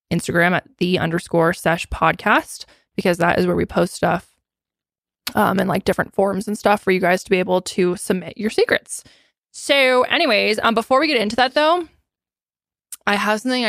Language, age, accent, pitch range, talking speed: English, 20-39, American, 175-215 Hz, 185 wpm